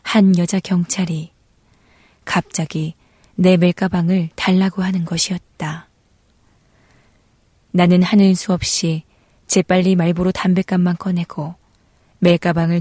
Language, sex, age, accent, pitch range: Korean, female, 20-39, native, 170-190 Hz